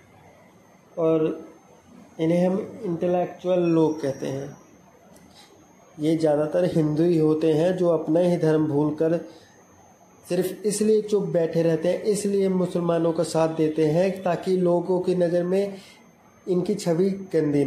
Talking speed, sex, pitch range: 130 wpm, male, 155-190 Hz